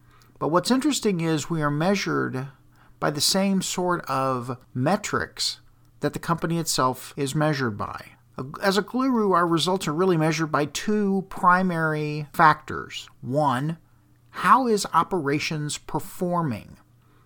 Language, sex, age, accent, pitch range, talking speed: English, male, 50-69, American, 125-170 Hz, 130 wpm